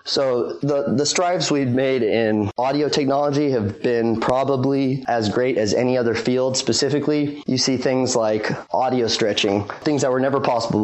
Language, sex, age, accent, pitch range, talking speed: English, male, 20-39, American, 115-135 Hz, 165 wpm